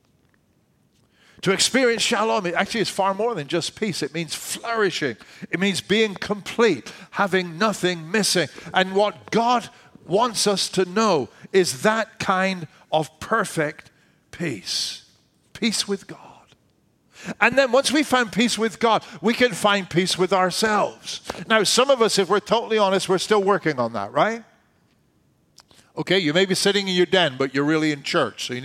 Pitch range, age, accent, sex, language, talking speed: 150-215 Hz, 50-69, American, male, English, 165 wpm